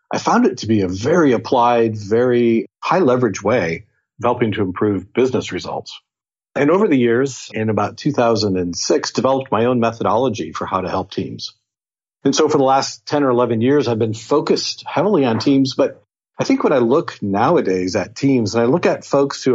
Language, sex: English, male